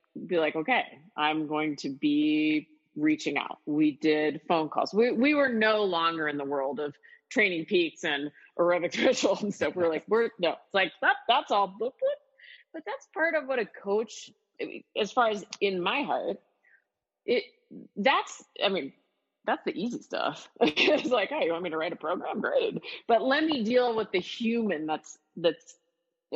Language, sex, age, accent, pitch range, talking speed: English, female, 30-49, American, 165-265 Hz, 185 wpm